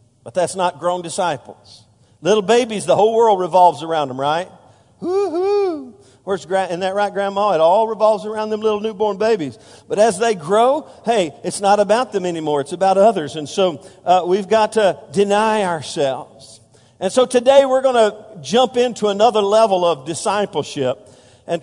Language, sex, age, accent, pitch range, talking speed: English, male, 50-69, American, 155-215 Hz, 170 wpm